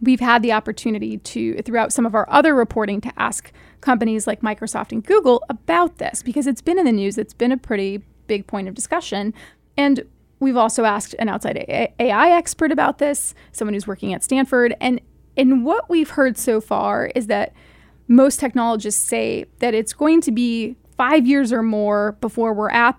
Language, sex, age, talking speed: English, female, 30-49, 190 wpm